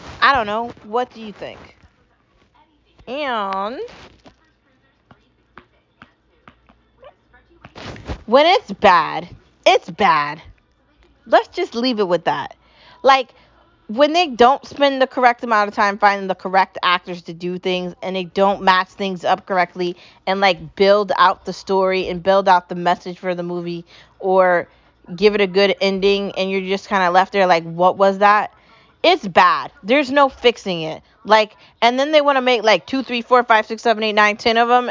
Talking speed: 170 wpm